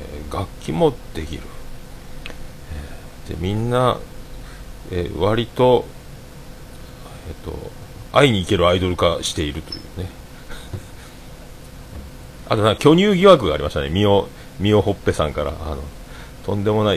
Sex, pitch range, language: male, 80-105 Hz, Japanese